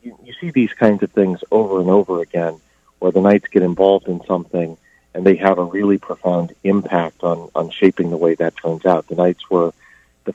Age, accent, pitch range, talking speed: 40-59, American, 90-100 Hz, 210 wpm